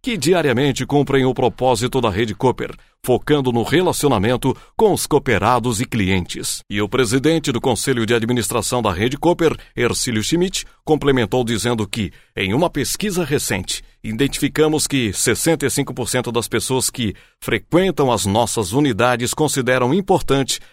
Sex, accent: male, Brazilian